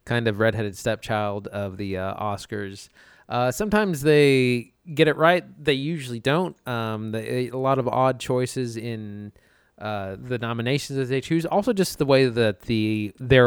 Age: 20-39